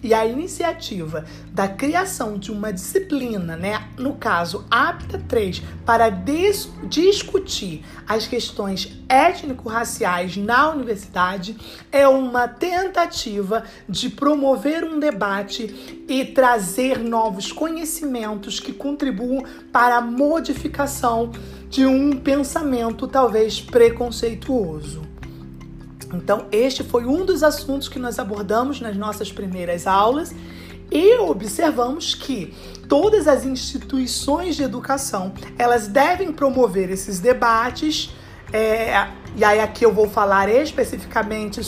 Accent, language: Brazilian, Portuguese